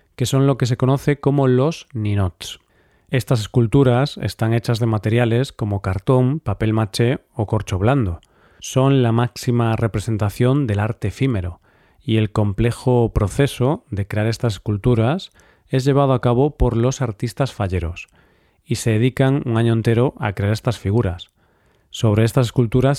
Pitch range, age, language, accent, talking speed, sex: 105-125 Hz, 40-59, Spanish, Spanish, 150 wpm, male